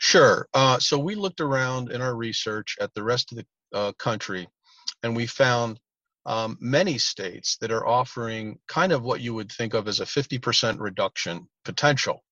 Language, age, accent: English, 40-59, American